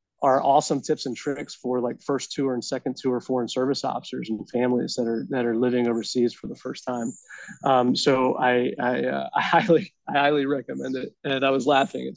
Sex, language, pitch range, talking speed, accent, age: male, English, 125-145 Hz, 210 wpm, American, 20-39